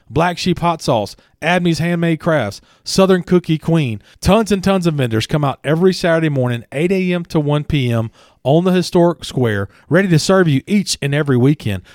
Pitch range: 140-190 Hz